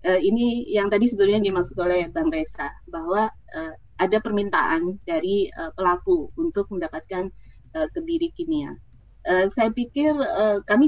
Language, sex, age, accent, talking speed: Indonesian, female, 20-39, native, 145 wpm